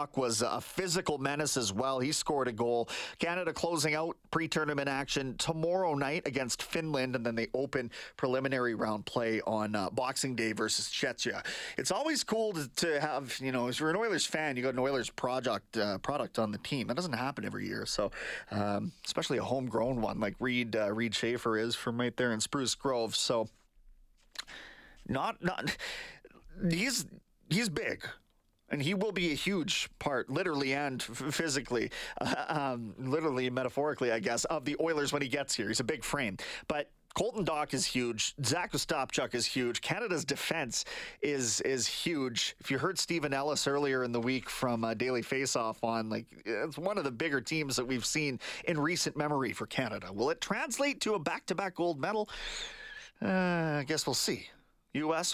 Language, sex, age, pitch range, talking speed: English, male, 30-49, 120-160 Hz, 185 wpm